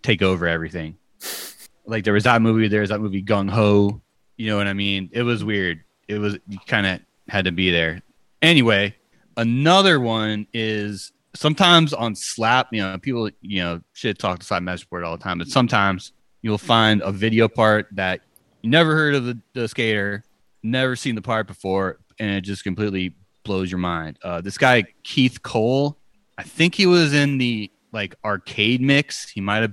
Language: English